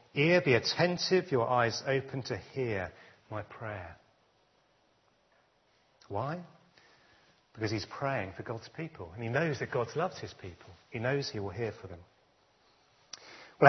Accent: British